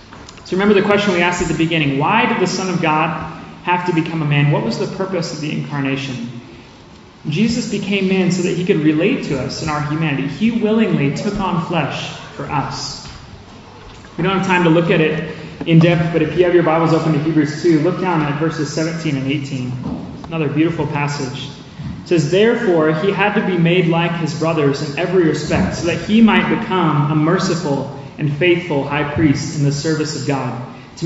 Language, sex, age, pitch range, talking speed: English, male, 30-49, 145-190 Hz, 210 wpm